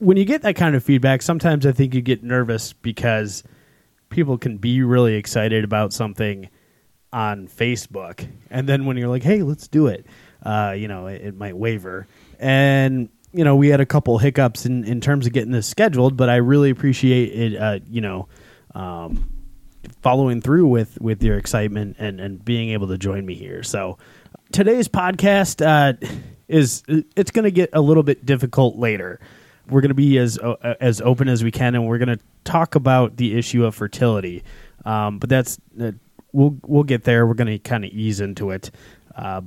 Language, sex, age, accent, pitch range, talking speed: English, male, 20-39, American, 105-140 Hz, 190 wpm